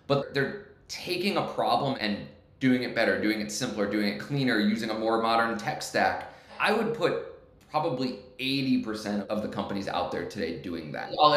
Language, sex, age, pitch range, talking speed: English, male, 20-39, 105-135 Hz, 185 wpm